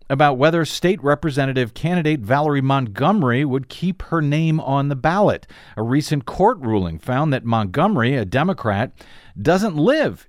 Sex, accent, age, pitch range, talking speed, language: male, American, 50-69, 125-170 Hz, 145 wpm, English